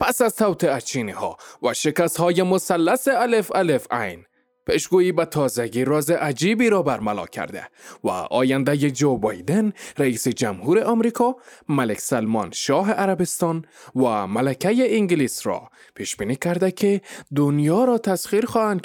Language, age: Persian, 20-39